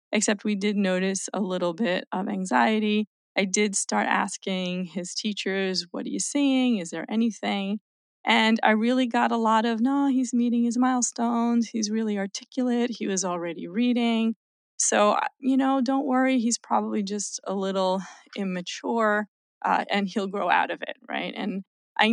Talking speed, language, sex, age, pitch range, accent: 170 wpm, English, female, 30-49, 185-235 Hz, American